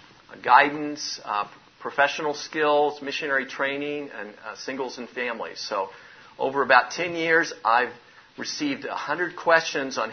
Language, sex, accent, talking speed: English, male, American, 125 wpm